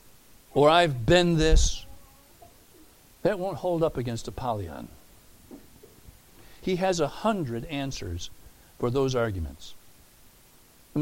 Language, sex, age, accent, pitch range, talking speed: English, male, 60-79, American, 120-200 Hz, 105 wpm